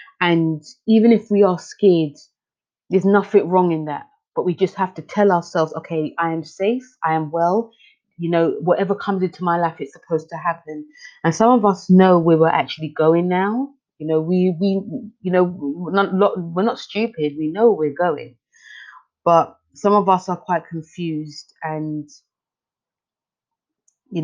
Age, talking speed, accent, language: 30-49, 175 wpm, British, English